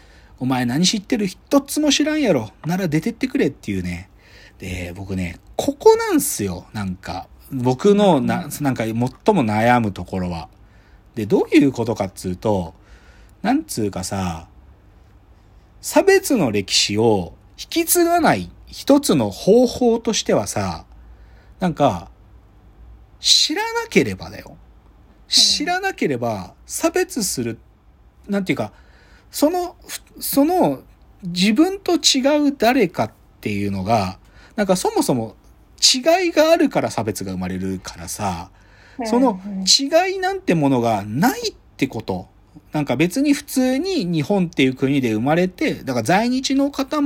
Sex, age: male, 40-59